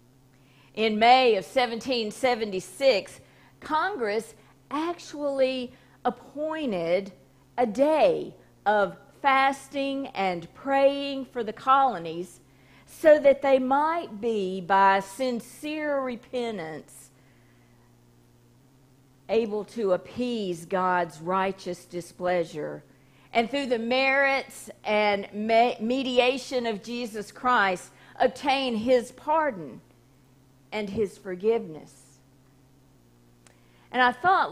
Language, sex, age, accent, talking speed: English, female, 50-69, American, 85 wpm